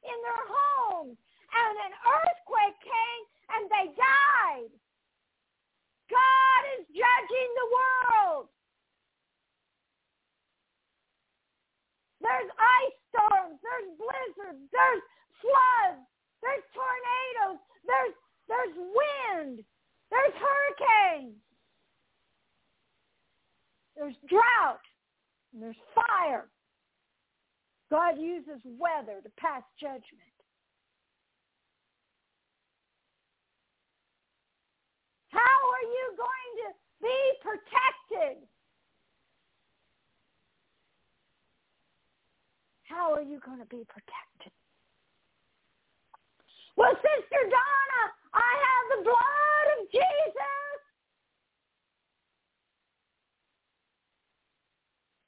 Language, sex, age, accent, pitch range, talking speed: English, female, 50-69, American, 290-485 Hz, 70 wpm